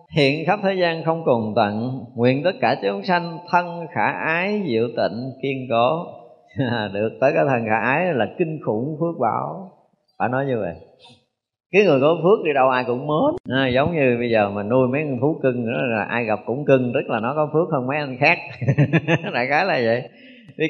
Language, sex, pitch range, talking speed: Vietnamese, male, 125-175 Hz, 215 wpm